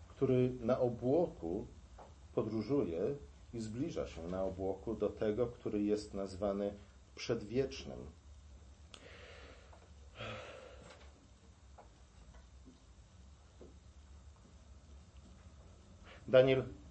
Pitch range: 80-120 Hz